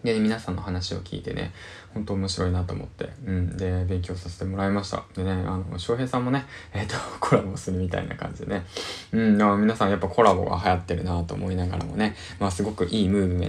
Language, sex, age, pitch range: Japanese, male, 20-39, 90-105 Hz